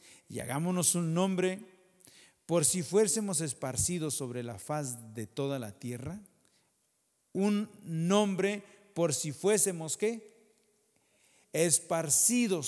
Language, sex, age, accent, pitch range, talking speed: English, male, 50-69, Mexican, 135-185 Hz, 105 wpm